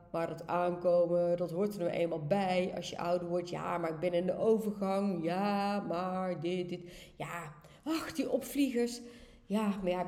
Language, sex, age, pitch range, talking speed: Dutch, female, 30-49, 170-230 Hz, 185 wpm